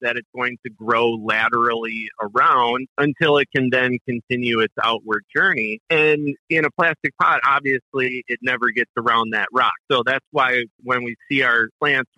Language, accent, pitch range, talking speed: English, American, 120-140 Hz, 170 wpm